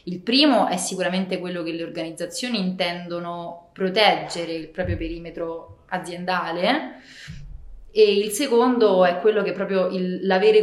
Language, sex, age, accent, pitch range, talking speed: Italian, female, 20-39, native, 165-195 Hz, 130 wpm